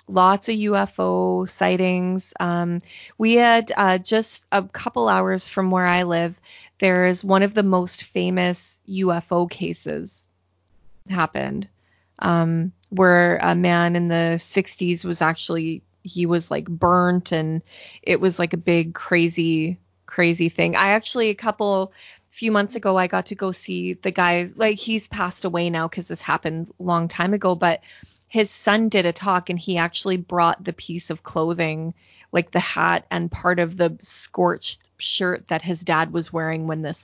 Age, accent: 20-39, American